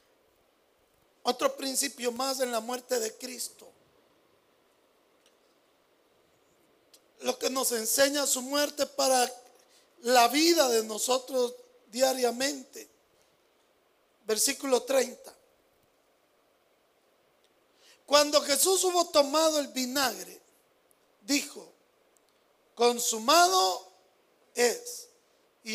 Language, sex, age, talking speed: Spanish, male, 50-69, 75 wpm